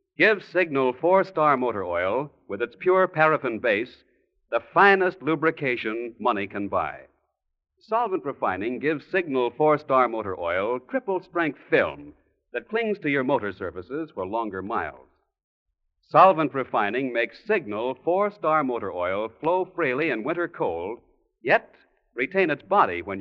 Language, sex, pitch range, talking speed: English, male, 120-195 Hz, 130 wpm